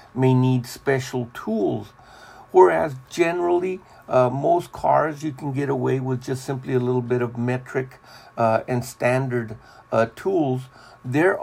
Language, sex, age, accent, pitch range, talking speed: English, male, 60-79, American, 125-155 Hz, 140 wpm